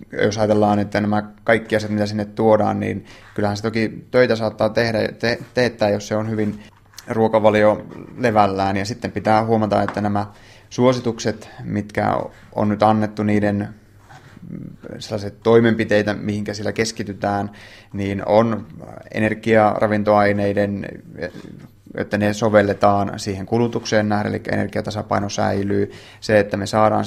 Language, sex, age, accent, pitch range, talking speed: Finnish, male, 20-39, native, 100-110 Hz, 125 wpm